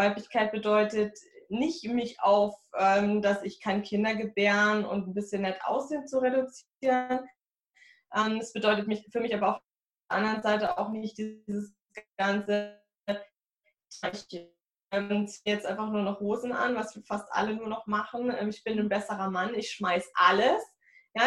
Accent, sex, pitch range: German, female, 200-235 Hz